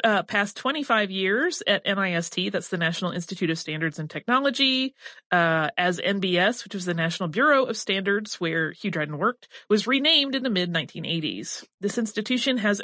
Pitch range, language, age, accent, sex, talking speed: 175-245 Hz, English, 30-49, American, female, 170 wpm